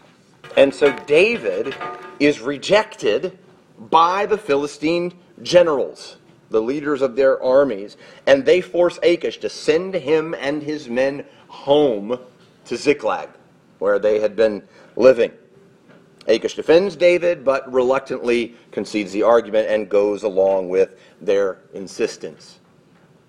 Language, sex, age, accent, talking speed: English, male, 40-59, American, 120 wpm